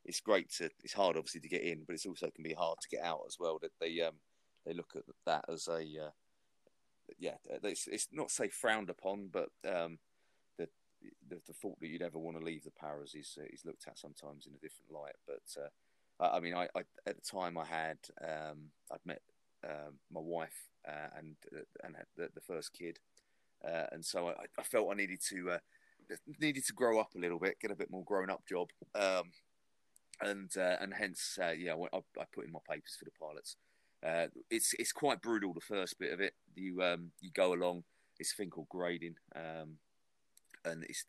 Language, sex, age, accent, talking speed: English, male, 30-49, British, 220 wpm